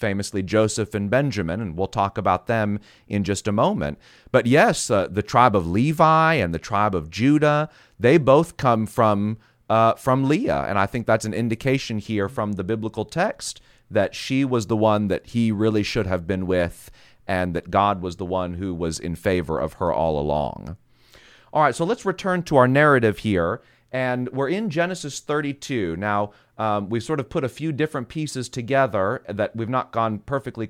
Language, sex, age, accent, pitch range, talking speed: English, male, 30-49, American, 105-135 Hz, 195 wpm